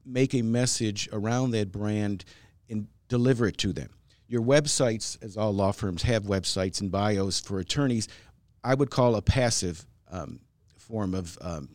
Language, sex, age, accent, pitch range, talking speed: English, male, 50-69, American, 100-125 Hz, 165 wpm